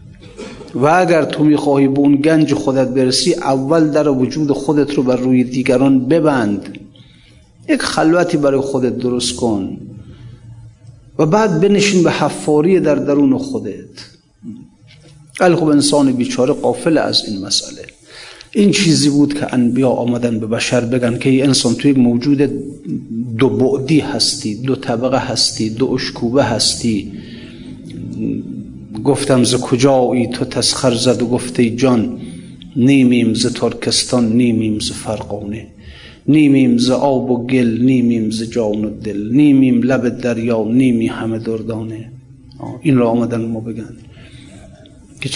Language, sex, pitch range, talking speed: Persian, male, 120-145 Hz, 130 wpm